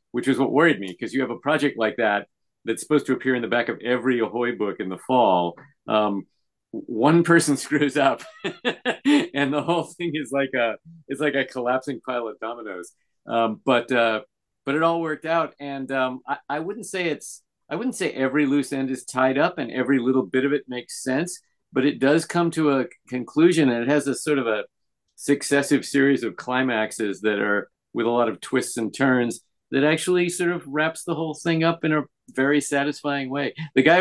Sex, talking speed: male, 210 wpm